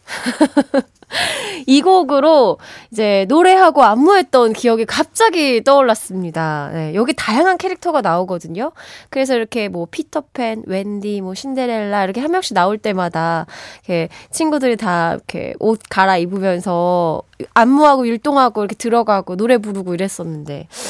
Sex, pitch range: female, 200-295 Hz